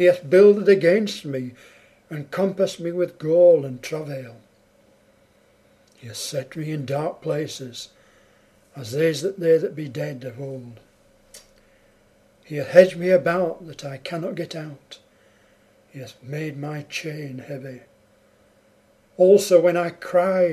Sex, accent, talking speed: male, British, 140 wpm